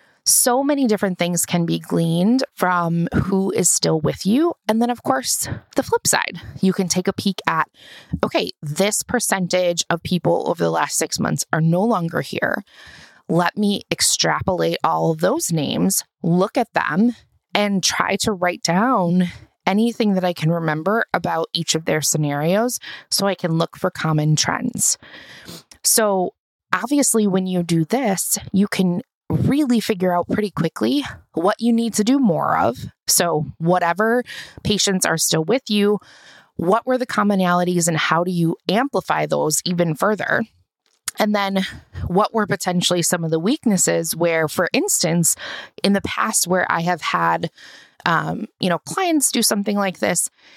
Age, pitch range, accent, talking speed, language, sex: 20-39, 170-215 Hz, American, 165 wpm, English, female